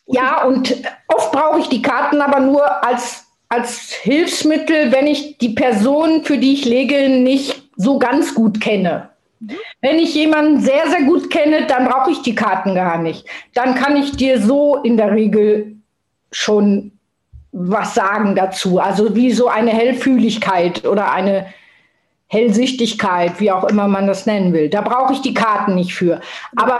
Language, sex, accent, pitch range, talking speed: German, female, German, 220-275 Hz, 165 wpm